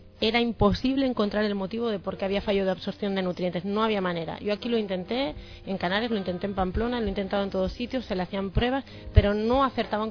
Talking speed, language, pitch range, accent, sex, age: 230 wpm, Spanish, 180-230 Hz, Spanish, female, 30-49